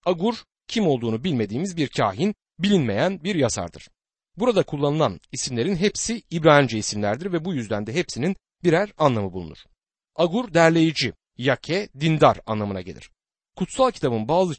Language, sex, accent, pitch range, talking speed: Turkish, male, native, 120-185 Hz, 130 wpm